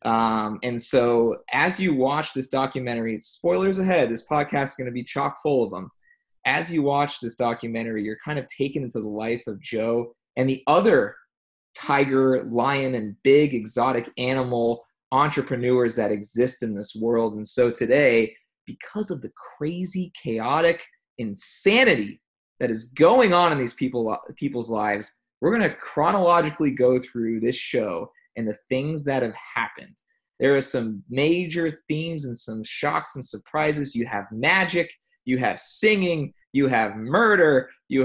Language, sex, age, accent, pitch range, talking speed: English, male, 20-39, American, 115-160 Hz, 160 wpm